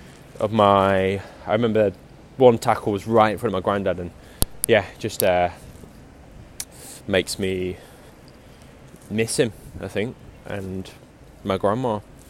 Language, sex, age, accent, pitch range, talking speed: English, male, 10-29, British, 95-110 Hz, 125 wpm